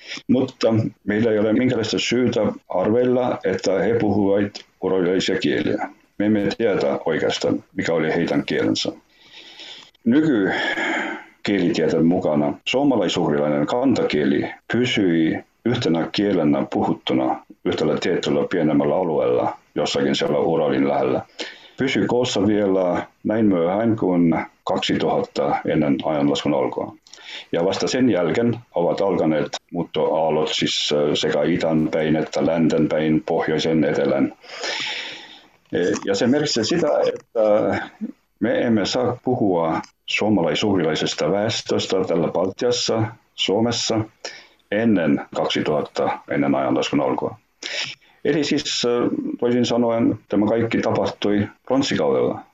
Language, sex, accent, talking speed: Finnish, male, native, 100 wpm